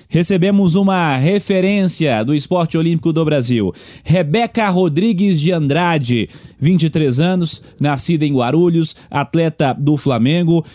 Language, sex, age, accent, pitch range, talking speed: Portuguese, male, 30-49, Brazilian, 135-175 Hz, 110 wpm